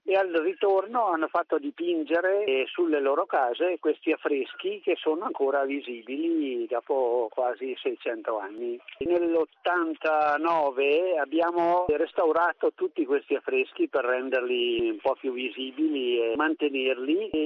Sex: male